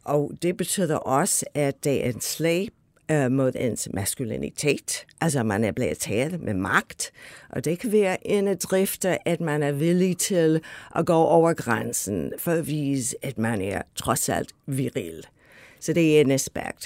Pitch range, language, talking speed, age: 135-170 Hz, Danish, 175 wpm, 60-79